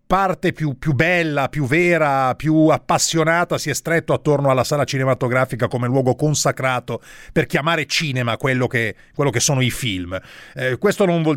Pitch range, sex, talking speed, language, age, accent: 130-165 Hz, male, 165 wpm, Italian, 40-59, native